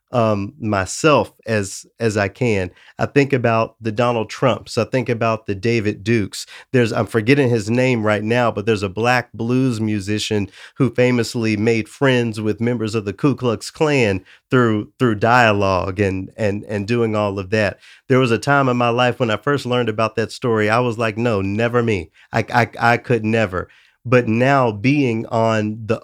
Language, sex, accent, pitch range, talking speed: English, male, American, 105-125 Hz, 190 wpm